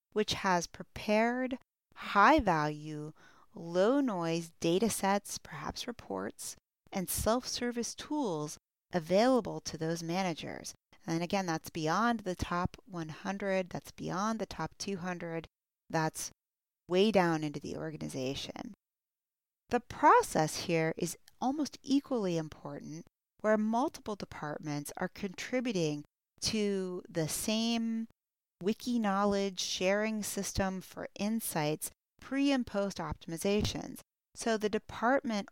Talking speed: 105 wpm